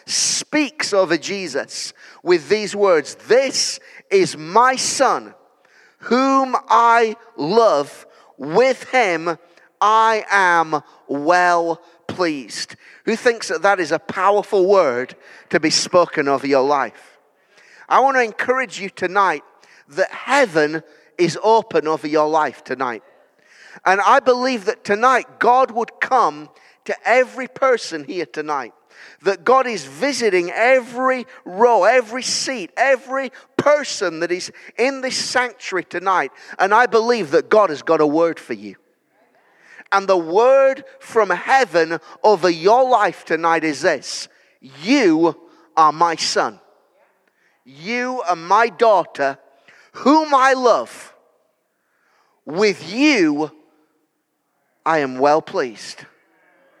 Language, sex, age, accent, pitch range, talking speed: English, male, 30-49, British, 165-255 Hz, 120 wpm